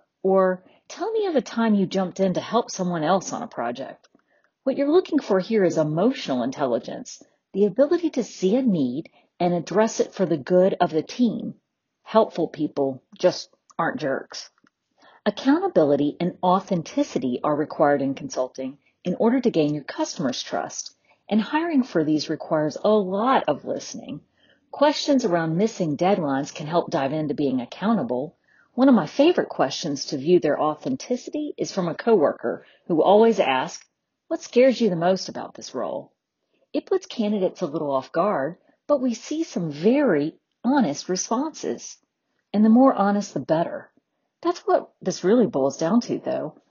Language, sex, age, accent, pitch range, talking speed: English, female, 40-59, American, 165-270 Hz, 165 wpm